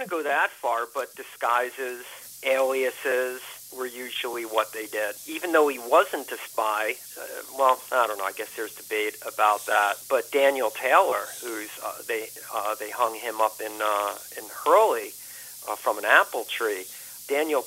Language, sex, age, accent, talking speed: English, male, 50-69, American, 165 wpm